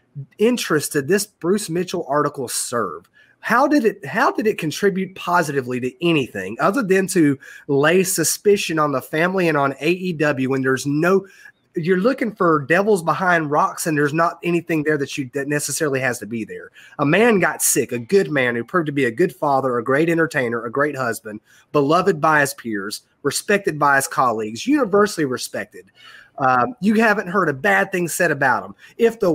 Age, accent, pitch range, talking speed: 30-49, American, 140-185 Hz, 190 wpm